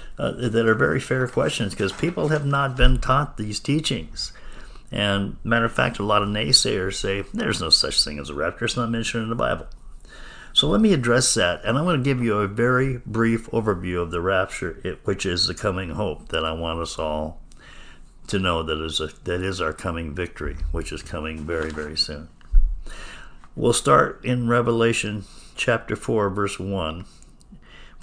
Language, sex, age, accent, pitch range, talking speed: English, male, 60-79, American, 90-115 Hz, 185 wpm